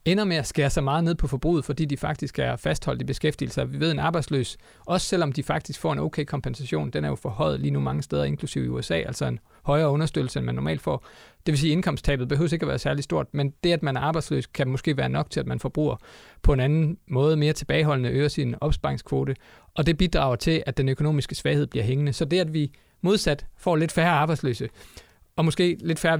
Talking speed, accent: 235 wpm, native